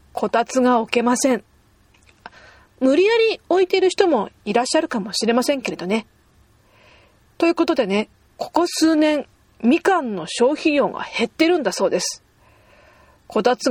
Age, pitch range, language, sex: 40-59, 230-320 Hz, Japanese, female